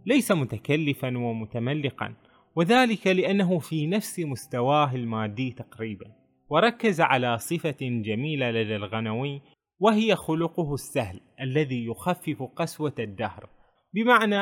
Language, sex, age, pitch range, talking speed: Arabic, male, 20-39, 125-175 Hz, 100 wpm